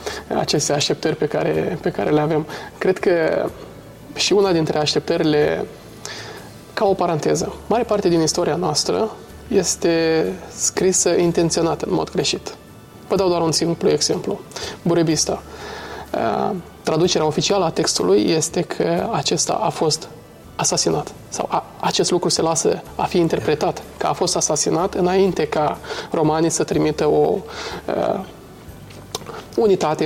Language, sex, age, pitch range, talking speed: Romanian, male, 20-39, 160-200 Hz, 130 wpm